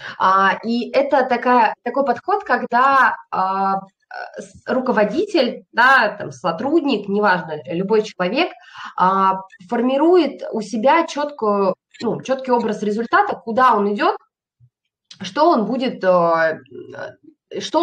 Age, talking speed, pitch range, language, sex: 20-39, 75 wpm, 185-250 Hz, Russian, female